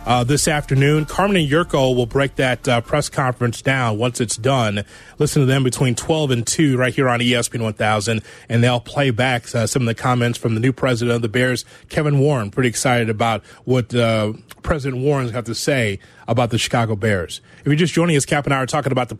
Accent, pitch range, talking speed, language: American, 120-145 Hz, 225 wpm, English